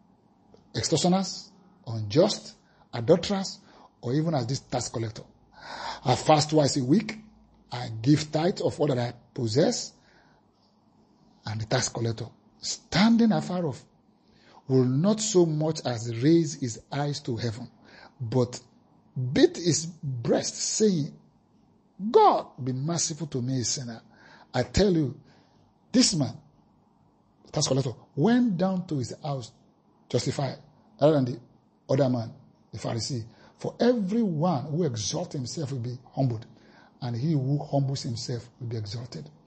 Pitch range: 125-170 Hz